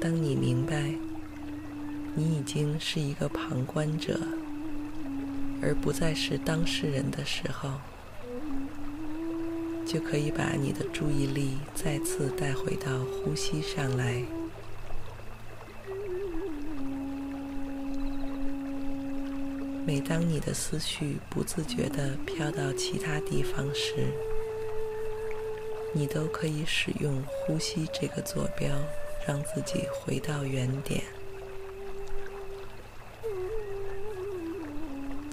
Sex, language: female, Chinese